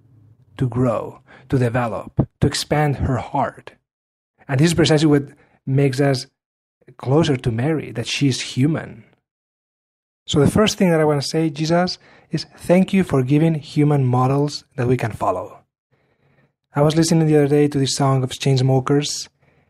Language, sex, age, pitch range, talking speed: English, male, 30-49, 125-155 Hz, 160 wpm